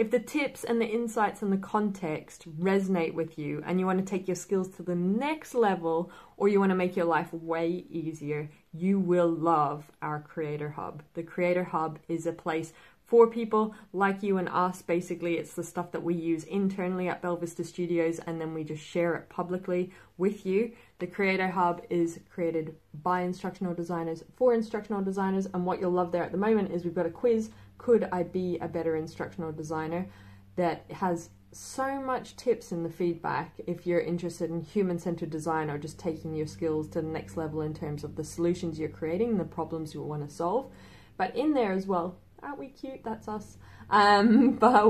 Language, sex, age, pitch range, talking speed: English, female, 20-39, 165-200 Hz, 200 wpm